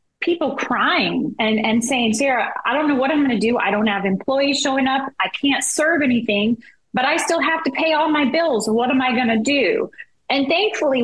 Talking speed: 225 wpm